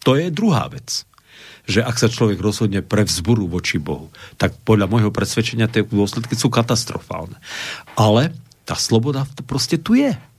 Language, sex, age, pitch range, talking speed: Slovak, male, 50-69, 100-125 Hz, 155 wpm